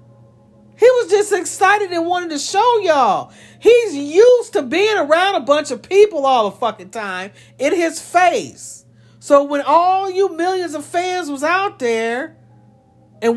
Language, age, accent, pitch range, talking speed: English, 50-69, American, 220-355 Hz, 160 wpm